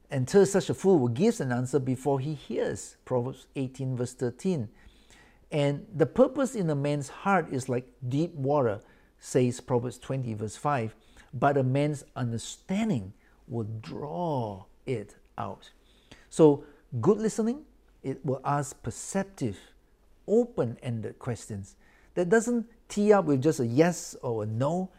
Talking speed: 145 wpm